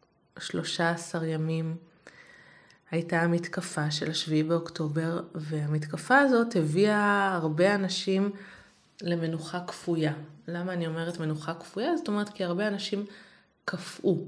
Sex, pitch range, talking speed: female, 165-210 Hz, 110 wpm